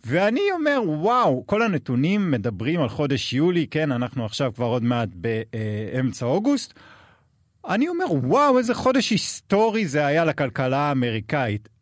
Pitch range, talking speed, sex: 120-185 Hz, 135 wpm, male